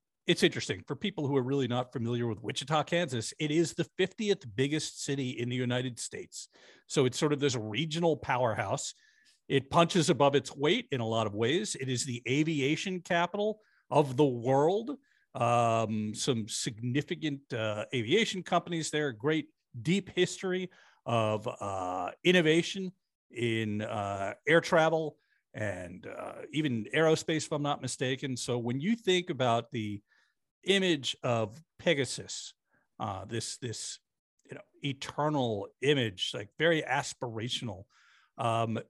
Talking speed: 140 wpm